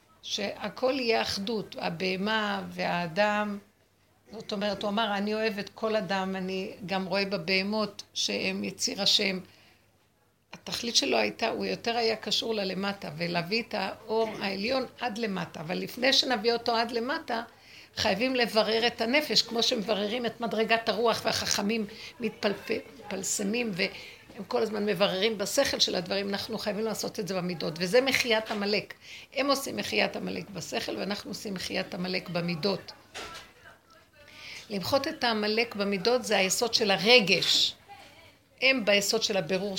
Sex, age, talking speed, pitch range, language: female, 60-79, 135 wpm, 190-230 Hz, Hebrew